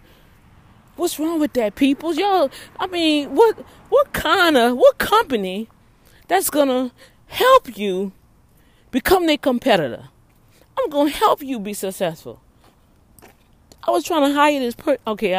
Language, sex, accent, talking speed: English, female, American, 145 wpm